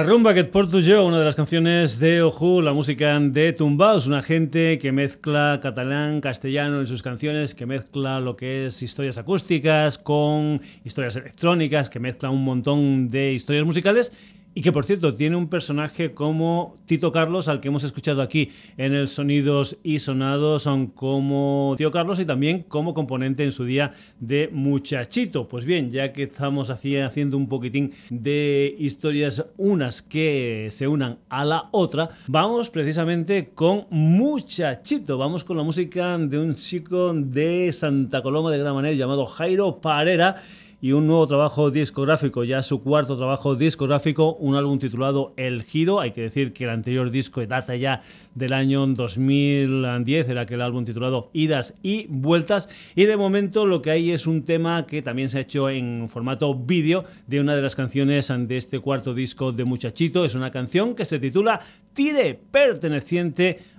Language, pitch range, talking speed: Spanish, 135-170 Hz, 170 wpm